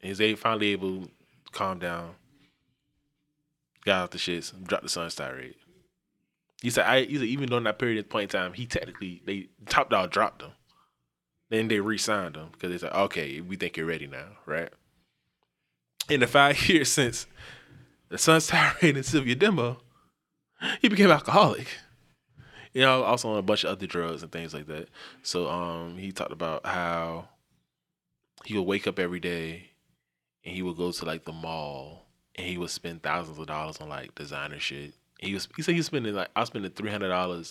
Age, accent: 20-39, American